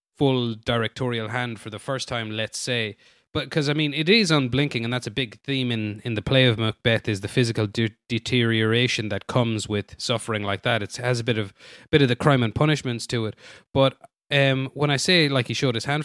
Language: English